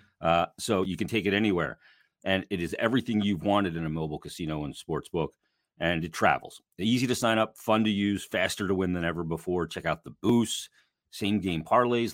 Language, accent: English, American